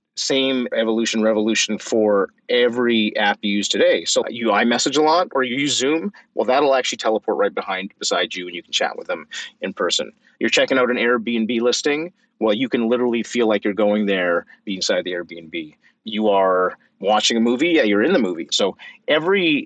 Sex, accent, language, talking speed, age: male, American, English, 195 wpm, 30-49